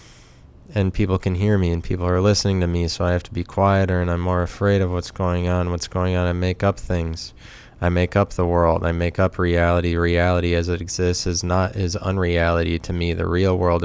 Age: 20-39